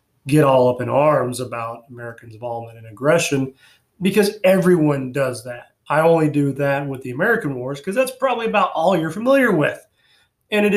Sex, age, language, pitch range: male, 30-49, English, 125-155 Hz